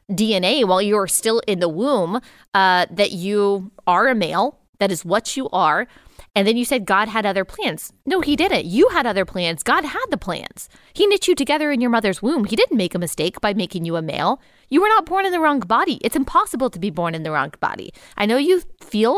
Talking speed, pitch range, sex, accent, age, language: 240 wpm, 195-265 Hz, female, American, 20-39, English